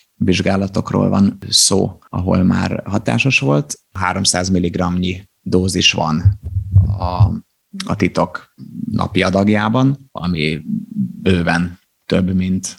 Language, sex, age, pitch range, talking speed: Hungarian, male, 30-49, 90-105 Hz, 95 wpm